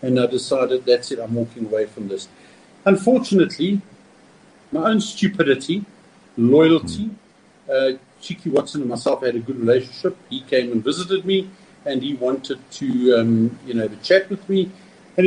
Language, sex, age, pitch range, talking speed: English, male, 50-69, 120-185 Hz, 165 wpm